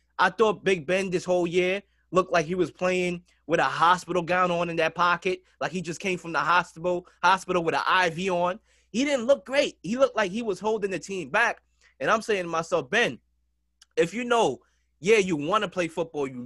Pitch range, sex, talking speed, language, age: 165-205 Hz, male, 220 wpm, English, 20-39